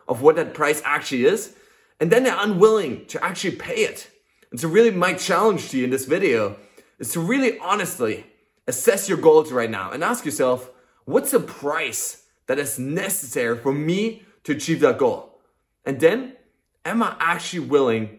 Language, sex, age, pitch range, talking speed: English, male, 20-39, 155-230 Hz, 180 wpm